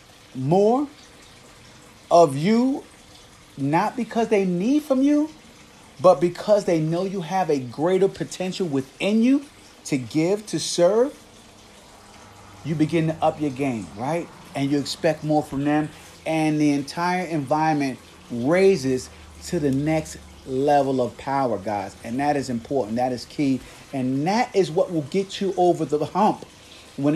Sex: male